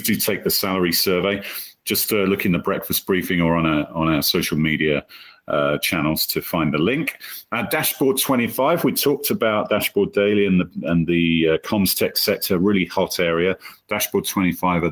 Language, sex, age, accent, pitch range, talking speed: English, male, 40-59, British, 85-100 Hz, 190 wpm